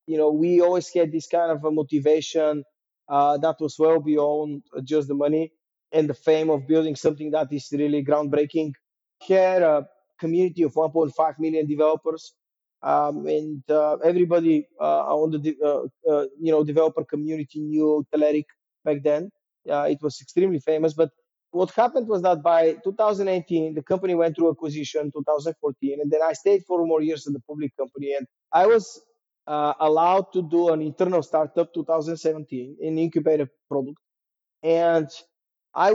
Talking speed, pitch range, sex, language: 165 wpm, 150-170 Hz, male, English